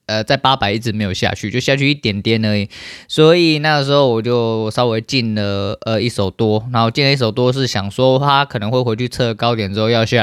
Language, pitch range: Chinese, 105-125 Hz